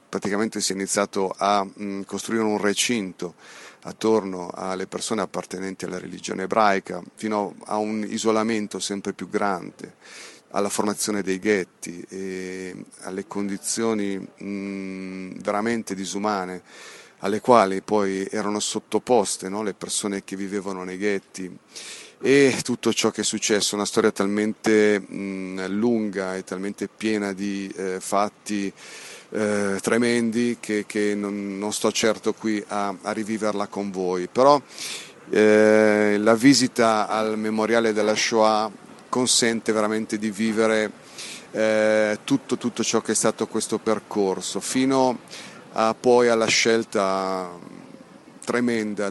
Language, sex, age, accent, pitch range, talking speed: Italian, male, 40-59, native, 95-110 Hz, 120 wpm